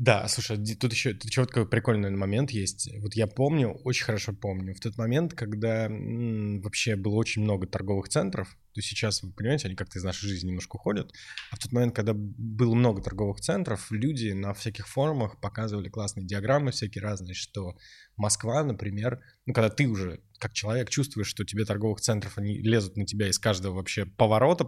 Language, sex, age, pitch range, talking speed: Russian, male, 20-39, 100-125 Hz, 190 wpm